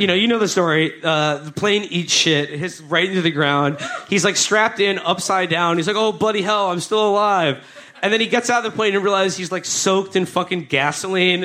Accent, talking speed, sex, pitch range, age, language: American, 245 wpm, male, 150-205 Hz, 40-59, English